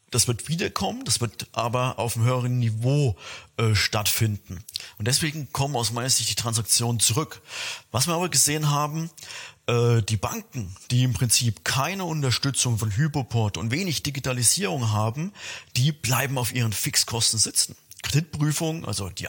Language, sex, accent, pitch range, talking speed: German, male, German, 115-145 Hz, 150 wpm